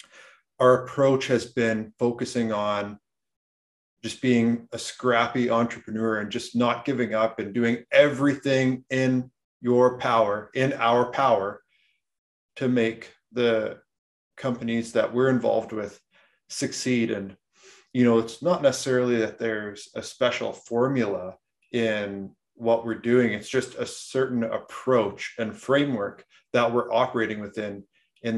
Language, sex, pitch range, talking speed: English, male, 110-125 Hz, 130 wpm